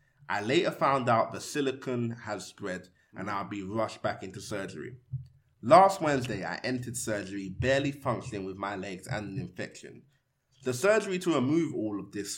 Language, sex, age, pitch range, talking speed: English, male, 20-39, 110-135 Hz, 170 wpm